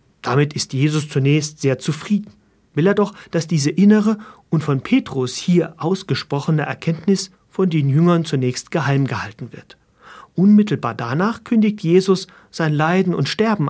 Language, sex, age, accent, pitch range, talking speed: German, male, 40-59, German, 140-190 Hz, 145 wpm